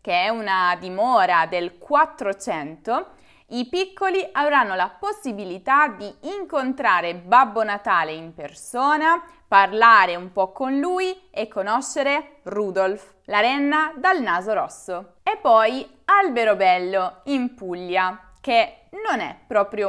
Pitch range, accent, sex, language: 190-295 Hz, native, female, Italian